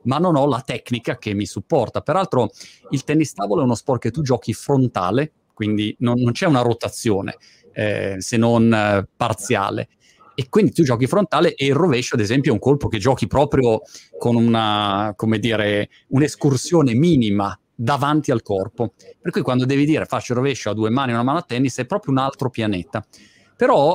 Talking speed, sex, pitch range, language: 195 wpm, male, 115-155 Hz, Italian